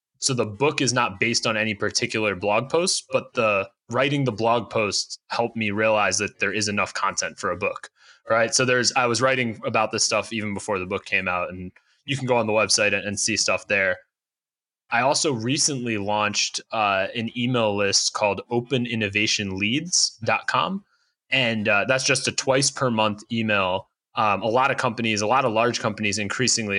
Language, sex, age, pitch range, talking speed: English, male, 20-39, 105-120 Hz, 185 wpm